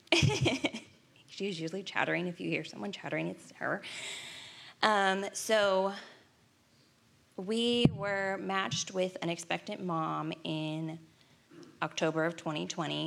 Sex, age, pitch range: female, 20-39, 155-185 Hz